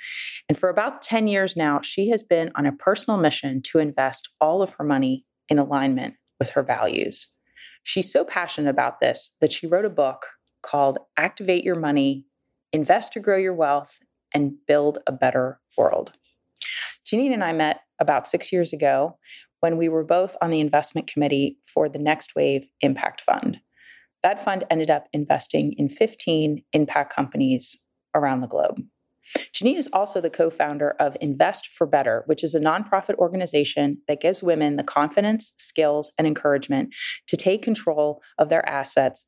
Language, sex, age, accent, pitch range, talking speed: English, female, 30-49, American, 140-180 Hz, 170 wpm